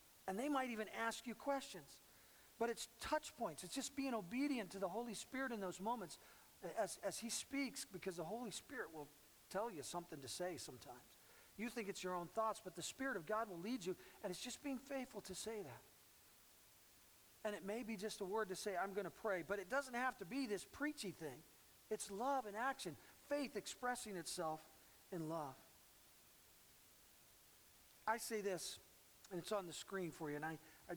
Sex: male